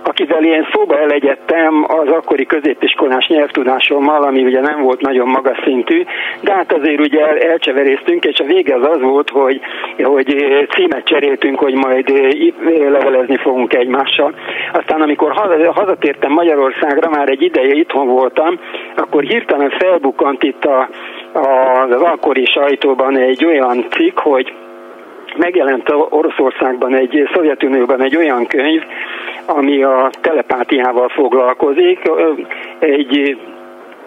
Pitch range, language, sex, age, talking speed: 130-160 Hz, Hungarian, male, 60-79, 125 wpm